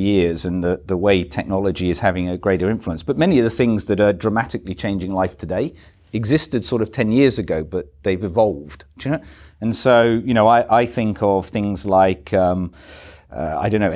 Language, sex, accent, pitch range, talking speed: English, male, British, 90-110 Hz, 205 wpm